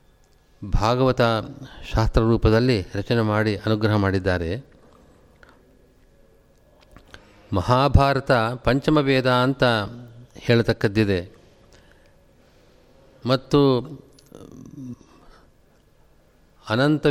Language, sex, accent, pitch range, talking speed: Kannada, male, native, 110-135 Hz, 45 wpm